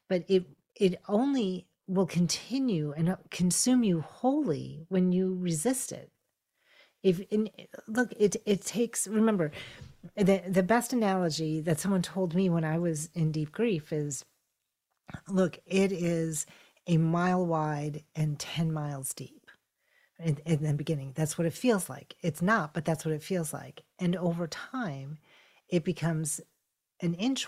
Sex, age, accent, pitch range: female, 40-59, American, 160-195 Hz